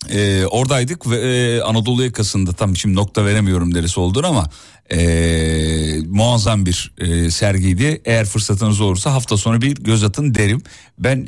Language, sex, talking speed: Turkish, male, 150 wpm